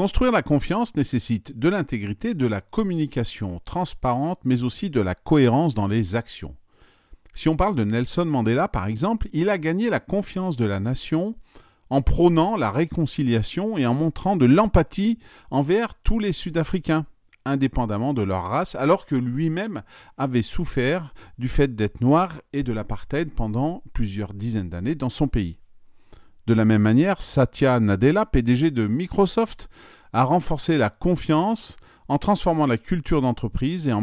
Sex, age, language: male, 40-59, French